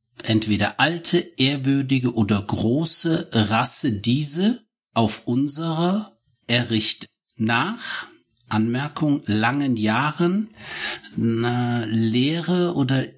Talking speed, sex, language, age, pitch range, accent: 75 wpm, male, German, 60-79, 115-170 Hz, German